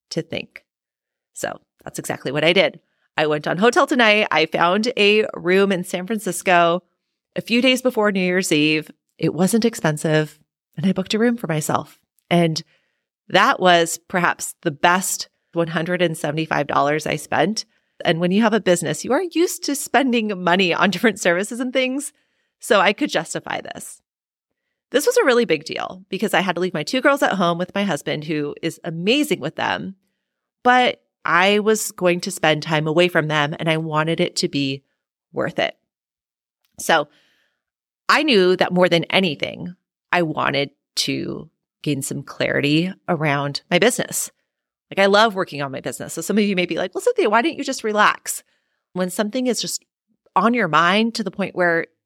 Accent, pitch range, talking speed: American, 165-220 Hz, 180 wpm